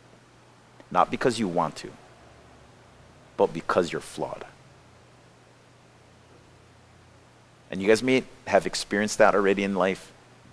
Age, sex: 50-69, male